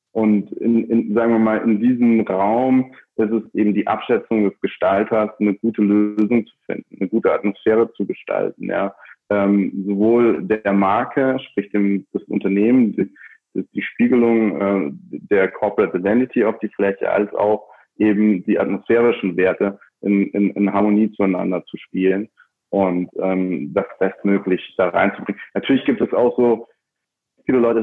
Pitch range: 100-115 Hz